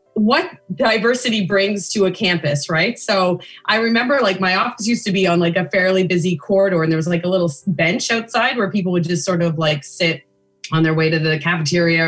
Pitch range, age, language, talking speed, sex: 170-230 Hz, 20-39, English, 220 wpm, female